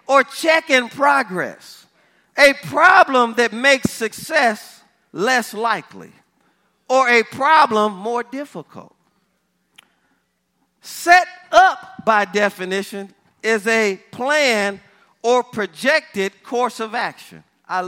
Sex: male